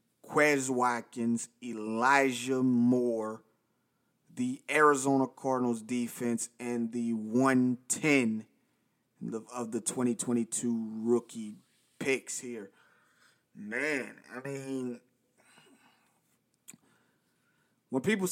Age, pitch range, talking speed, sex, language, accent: 30-49, 120-135 Hz, 70 wpm, male, English, American